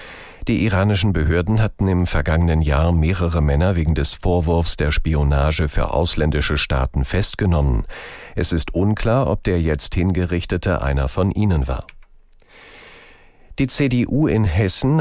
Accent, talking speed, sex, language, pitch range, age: German, 130 wpm, male, German, 75-100 Hz, 50-69